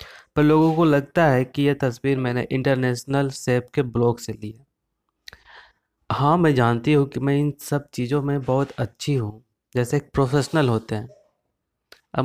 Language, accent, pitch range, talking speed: Hindi, native, 120-145 Hz, 170 wpm